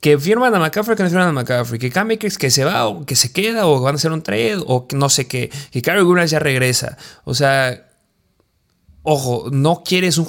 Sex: male